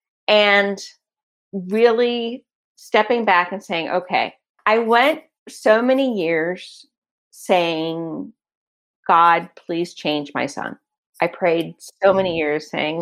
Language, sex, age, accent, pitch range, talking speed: English, female, 40-59, American, 170-225 Hz, 110 wpm